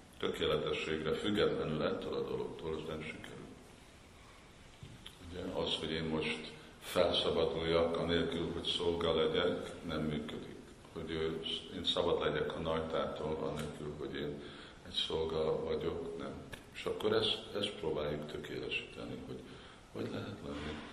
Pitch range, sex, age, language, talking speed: 75-90 Hz, male, 50-69, Hungarian, 125 wpm